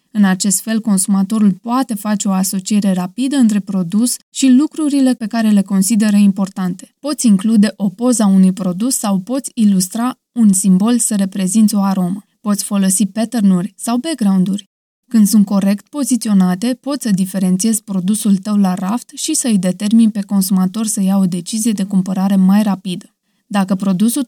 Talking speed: 160 wpm